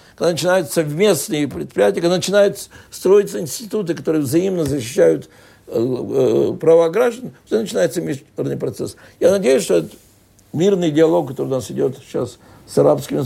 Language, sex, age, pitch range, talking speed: Russian, male, 60-79, 135-180 Hz, 135 wpm